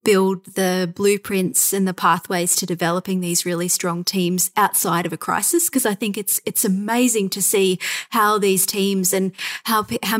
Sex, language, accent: female, English, Australian